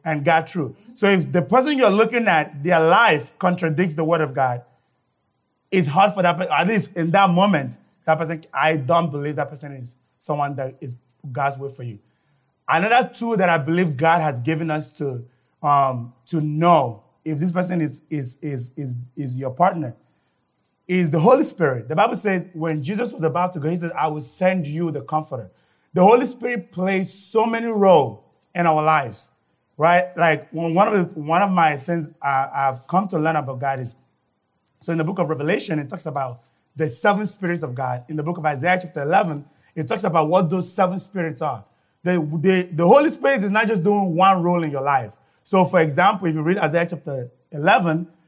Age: 30-49